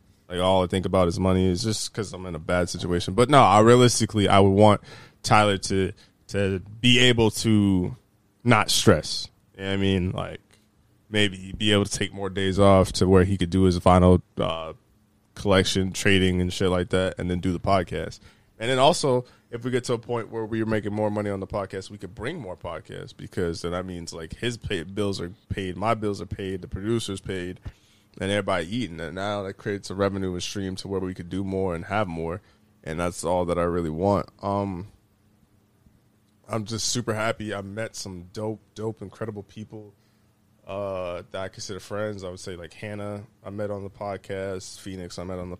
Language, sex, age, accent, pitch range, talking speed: English, male, 20-39, American, 95-105 Hz, 205 wpm